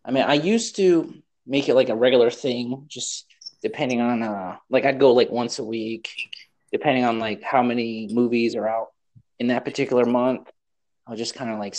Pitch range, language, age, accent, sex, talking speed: 110-135 Hz, English, 30-49, American, male, 200 wpm